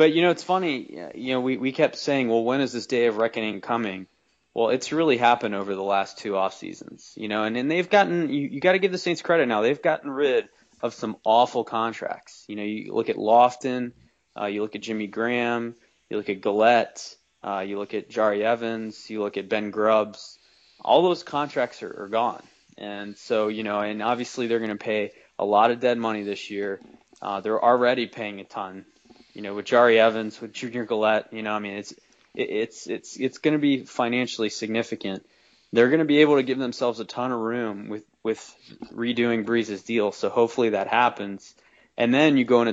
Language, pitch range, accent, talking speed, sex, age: English, 105-130 Hz, American, 215 wpm, male, 20-39